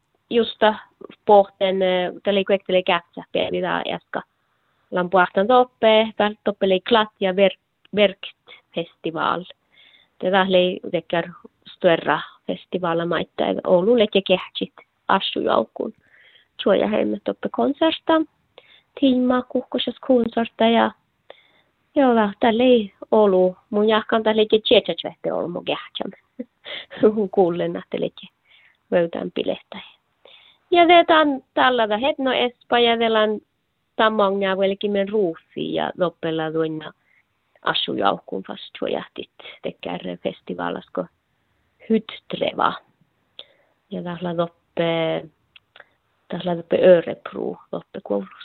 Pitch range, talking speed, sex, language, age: 185-235 Hz, 85 wpm, female, Finnish, 20-39